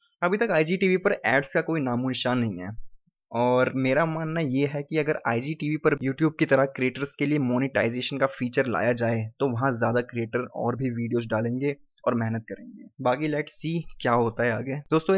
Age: 20-39